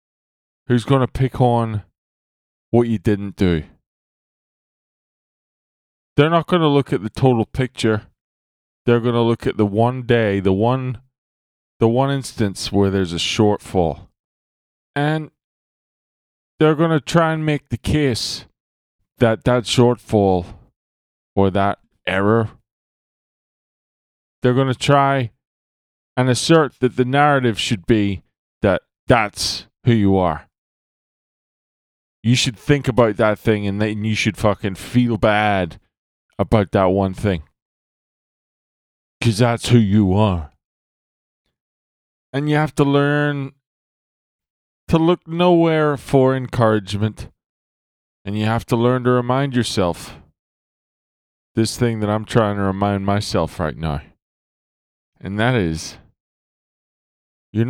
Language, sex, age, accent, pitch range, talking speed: English, male, 20-39, American, 95-130 Hz, 125 wpm